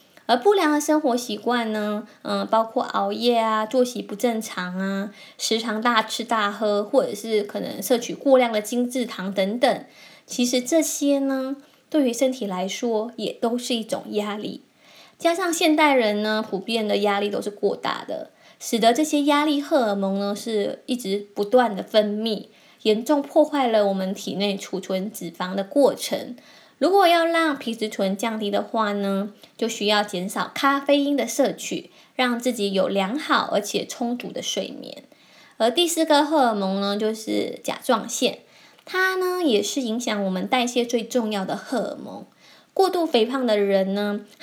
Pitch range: 210-275 Hz